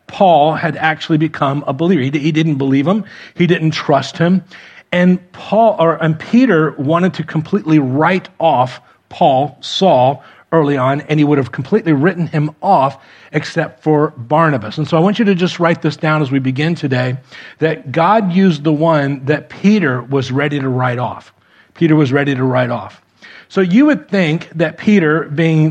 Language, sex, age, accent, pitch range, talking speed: English, male, 40-59, American, 145-170 Hz, 185 wpm